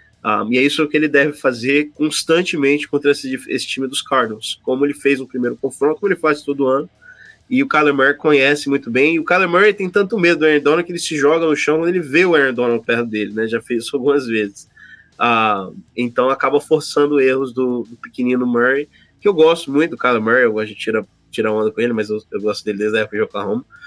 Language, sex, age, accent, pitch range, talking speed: Portuguese, male, 20-39, Brazilian, 125-155 Hz, 250 wpm